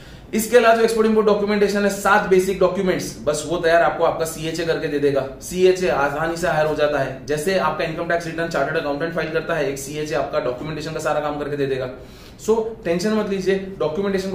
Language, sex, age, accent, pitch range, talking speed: Hindi, male, 30-49, native, 155-220 Hz, 65 wpm